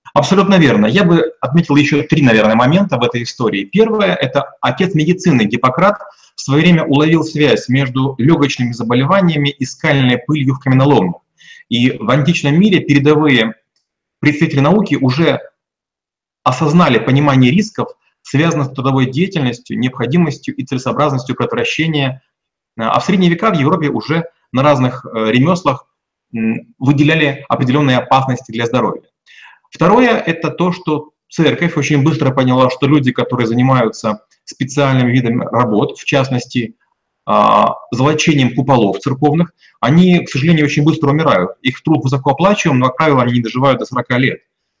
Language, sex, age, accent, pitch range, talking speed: Russian, male, 30-49, native, 130-165 Hz, 140 wpm